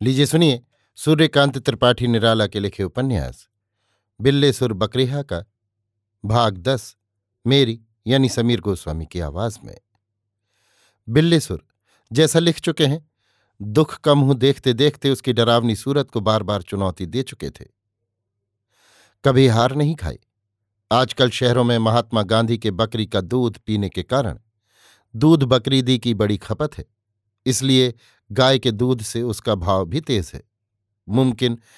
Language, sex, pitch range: Hindi, male, 105-135 Hz